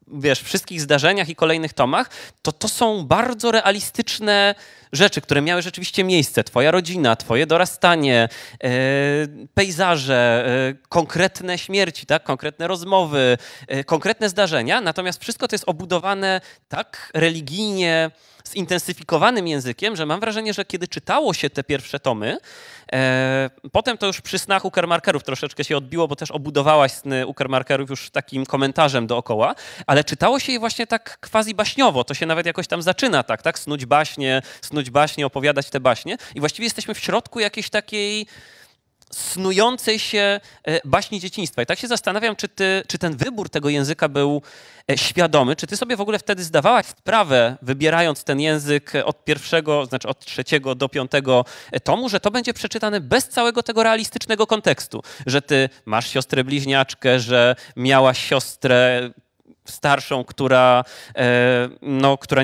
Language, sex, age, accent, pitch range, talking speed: Polish, male, 20-39, native, 135-195 Hz, 150 wpm